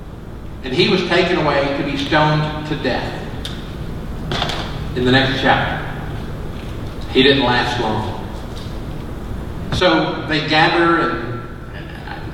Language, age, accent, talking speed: English, 50-69, American, 110 wpm